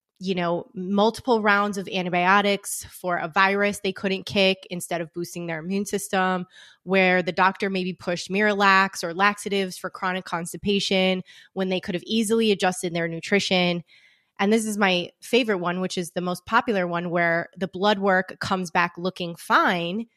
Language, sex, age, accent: English, female, 20-39, American